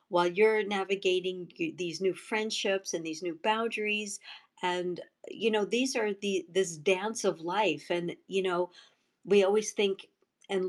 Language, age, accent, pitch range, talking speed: English, 50-69, American, 175-210 Hz, 150 wpm